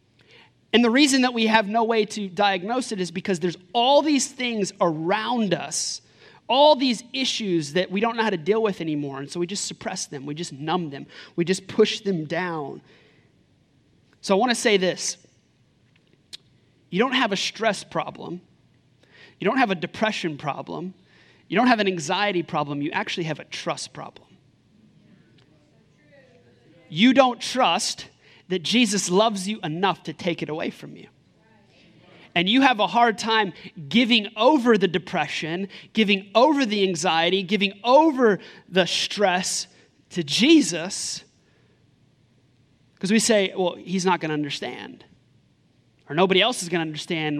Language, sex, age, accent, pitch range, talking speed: English, male, 30-49, American, 160-215 Hz, 155 wpm